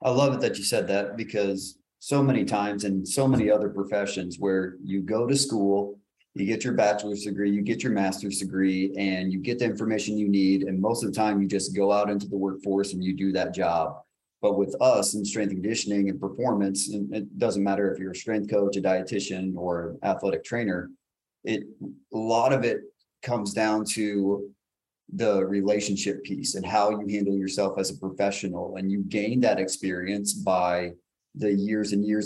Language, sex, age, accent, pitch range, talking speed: English, male, 30-49, American, 95-105 Hz, 200 wpm